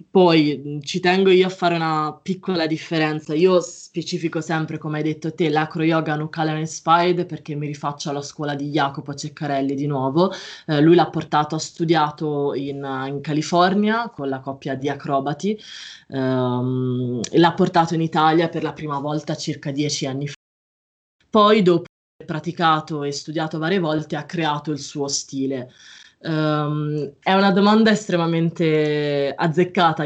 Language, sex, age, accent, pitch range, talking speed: Italian, female, 20-39, native, 145-175 Hz, 150 wpm